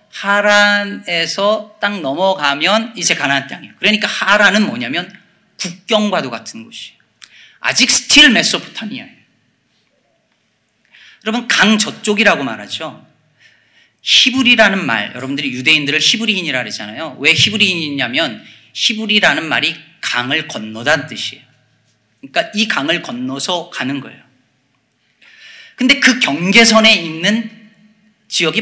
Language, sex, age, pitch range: Korean, male, 40-59, 140-220 Hz